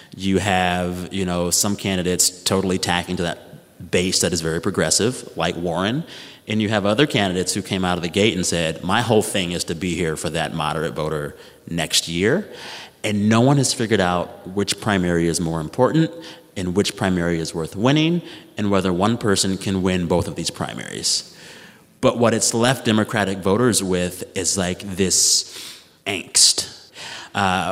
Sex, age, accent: male, 30-49, American